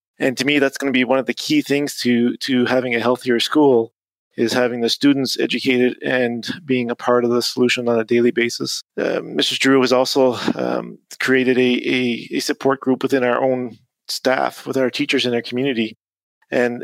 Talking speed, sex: 205 wpm, male